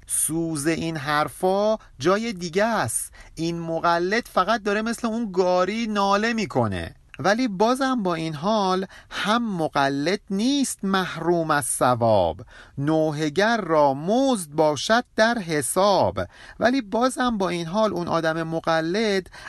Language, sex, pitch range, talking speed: Persian, male, 150-215 Hz, 125 wpm